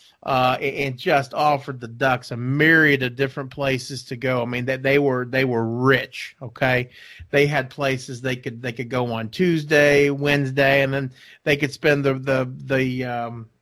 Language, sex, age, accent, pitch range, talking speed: English, male, 30-49, American, 125-150 Hz, 185 wpm